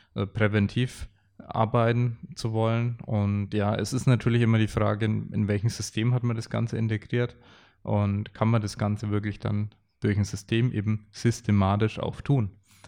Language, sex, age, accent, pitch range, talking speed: German, male, 20-39, German, 100-120 Hz, 160 wpm